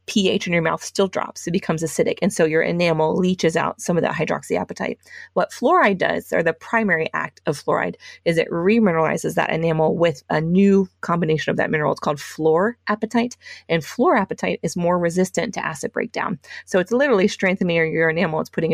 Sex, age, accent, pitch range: female, 20-39, American, 160-185 Hz